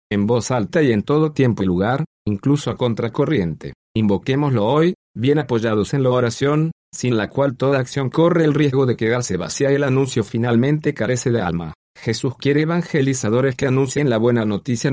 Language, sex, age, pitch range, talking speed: Spanish, male, 40-59, 110-140 Hz, 180 wpm